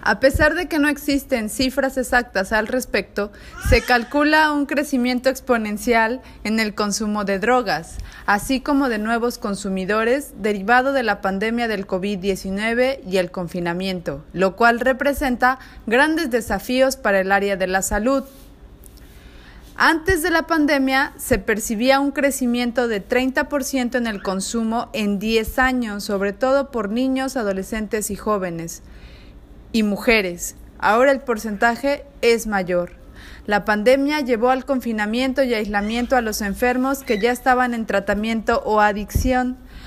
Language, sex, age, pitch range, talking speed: Spanish, female, 30-49, 205-260 Hz, 140 wpm